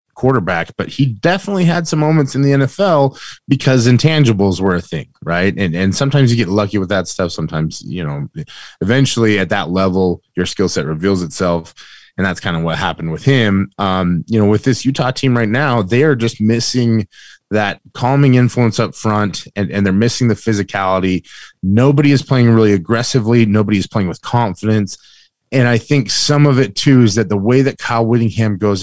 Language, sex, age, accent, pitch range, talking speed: English, male, 20-39, American, 95-125 Hz, 195 wpm